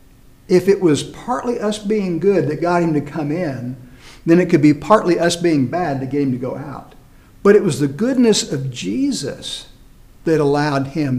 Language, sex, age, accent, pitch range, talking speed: English, male, 60-79, American, 140-180 Hz, 200 wpm